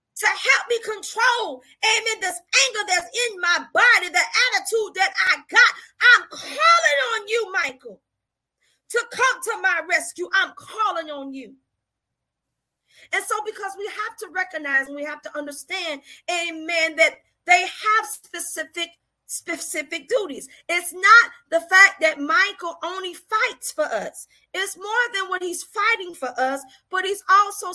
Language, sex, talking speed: English, female, 150 wpm